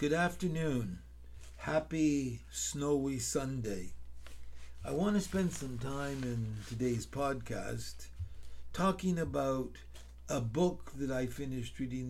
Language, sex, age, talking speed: English, male, 60-79, 110 wpm